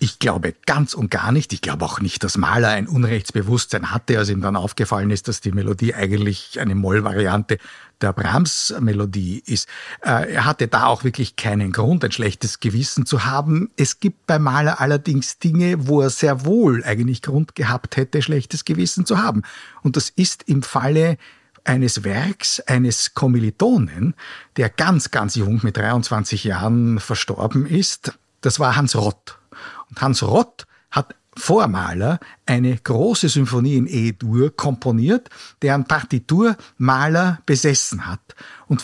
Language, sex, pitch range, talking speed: German, male, 110-150 Hz, 155 wpm